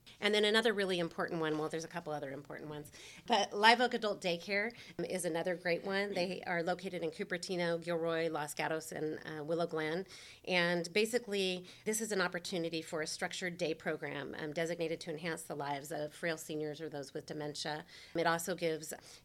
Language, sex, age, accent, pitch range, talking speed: English, female, 30-49, American, 155-175 Hz, 190 wpm